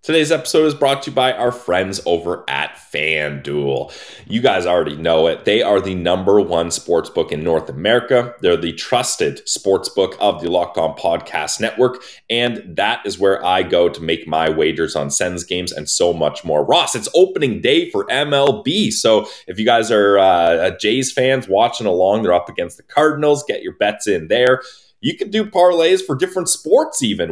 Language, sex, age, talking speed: English, male, 30-49, 190 wpm